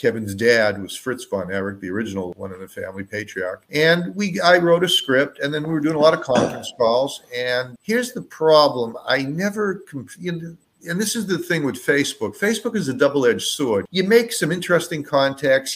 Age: 50-69